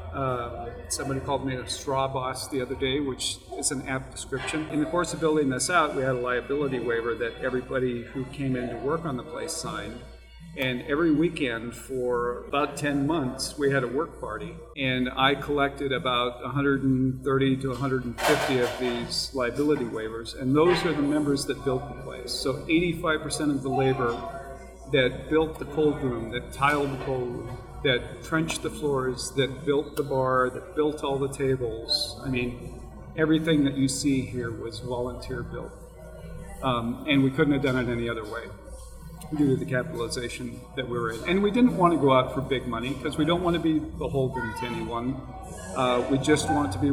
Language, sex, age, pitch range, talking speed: English, male, 50-69, 125-145 Hz, 190 wpm